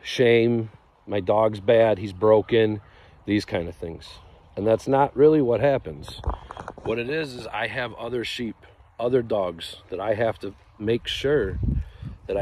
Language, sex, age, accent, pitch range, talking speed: English, male, 40-59, American, 90-115 Hz, 160 wpm